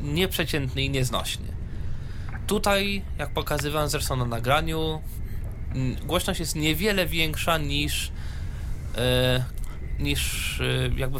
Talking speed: 85 wpm